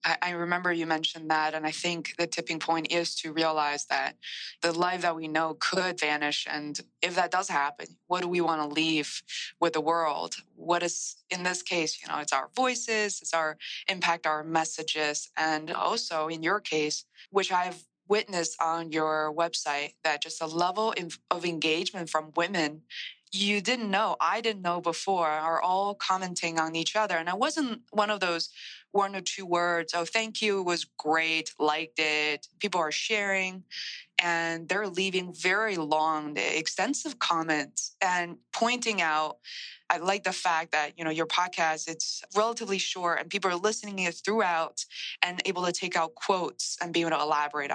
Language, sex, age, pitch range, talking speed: English, female, 20-39, 160-190 Hz, 180 wpm